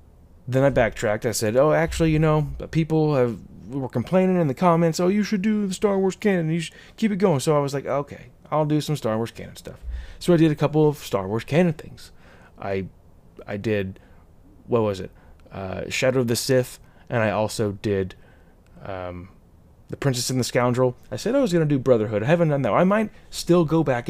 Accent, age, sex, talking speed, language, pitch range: American, 20-39, male, 220 wpm, English, 95-145 Hz